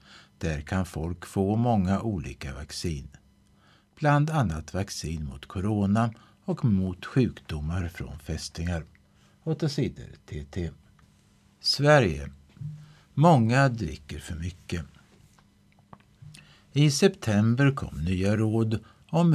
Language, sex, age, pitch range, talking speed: Swedish, male, 60-79, 85-115 Hz, 95 wpm